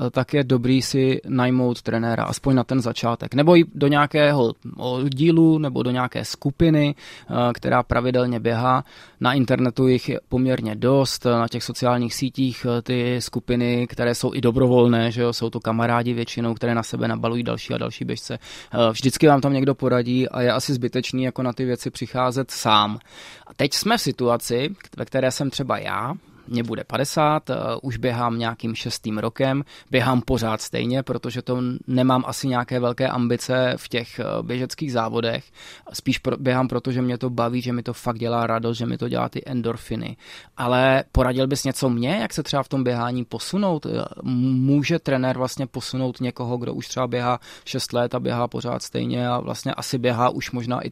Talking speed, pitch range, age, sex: 180 wpm, 120-130 Hz, 20-39, male